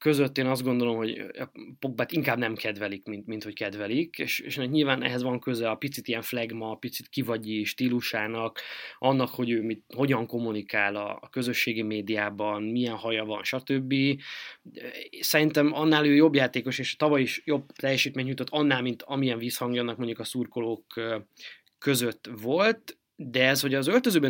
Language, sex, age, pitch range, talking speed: Hungarian, male, 20-39, 110-135 Hz, 170 wpm